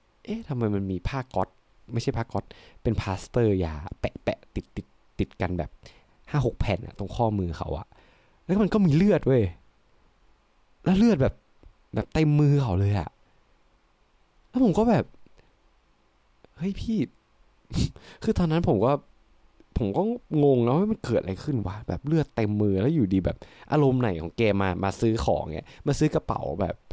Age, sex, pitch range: 20-39, male, 100-150 Hz